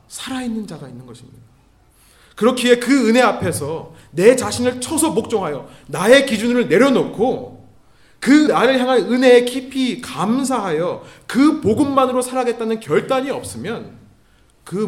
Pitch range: 155-255 Hz